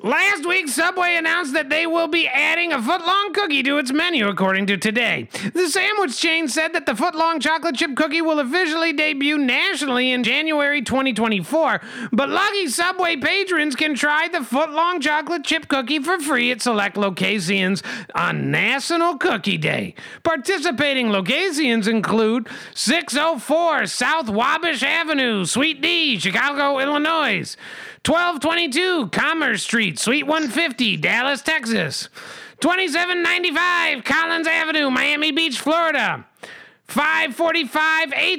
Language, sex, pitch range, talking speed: English, male, 245-330 Hz, 125 wpm